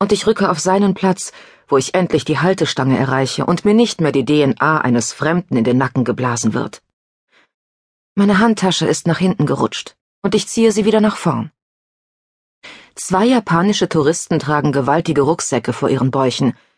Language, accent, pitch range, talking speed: German, German, 140-205 Hz, 170 wpm